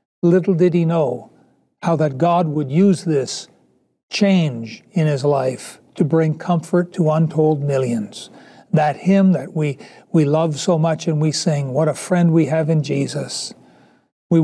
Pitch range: 145-175 Hz